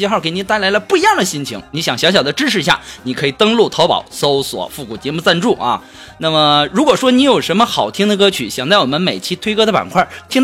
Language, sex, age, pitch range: Chinese, male, 20-39, 160-235 Hz